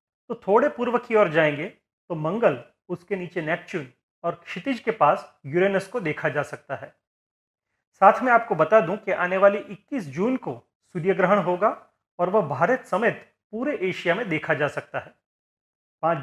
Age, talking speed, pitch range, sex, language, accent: 40-59, 80 wpm, 160-220 Hz, male, Hindi, native